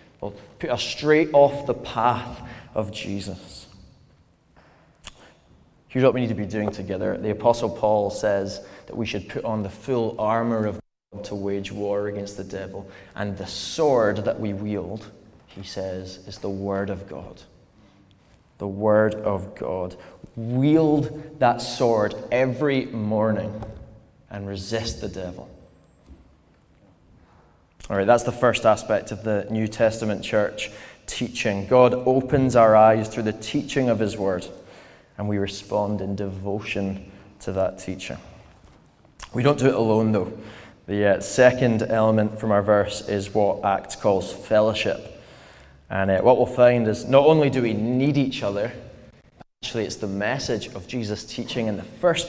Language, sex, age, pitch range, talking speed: English, male, 20-39, 100-115 Hz, 155 wpm